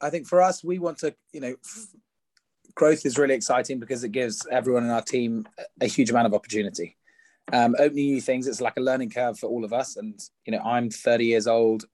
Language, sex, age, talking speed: English, male, 20-39, 225 wpm